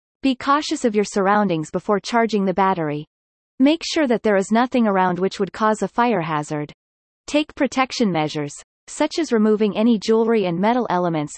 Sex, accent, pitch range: female, American, 180-250 Hz